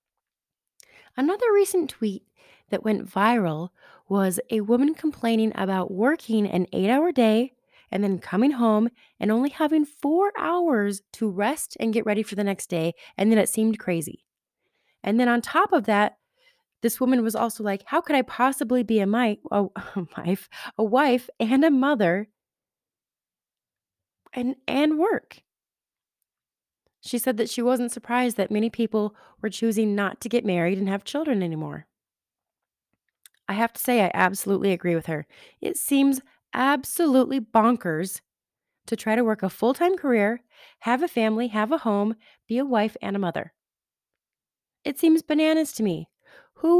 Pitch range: 200-280 Hz